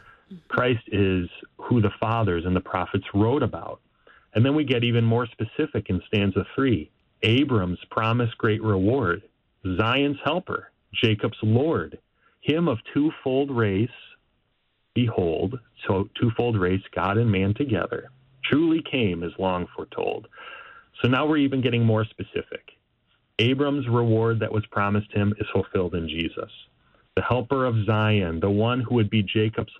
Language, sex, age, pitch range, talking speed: English, male, 40-59, 100-125 Hz, 145 wpm